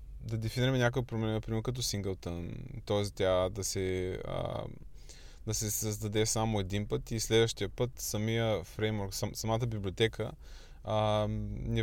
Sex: male